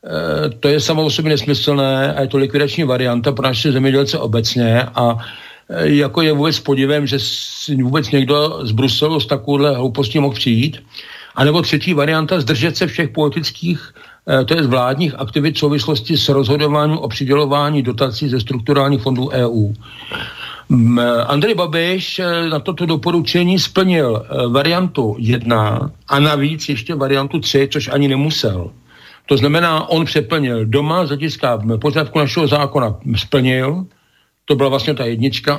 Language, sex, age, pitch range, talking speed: Slovak, male, 60-79, 125-150 Hz, 140 wpm